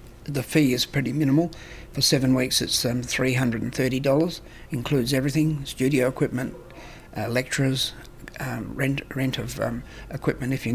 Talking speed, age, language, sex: 140 wpm, 60-79, English, male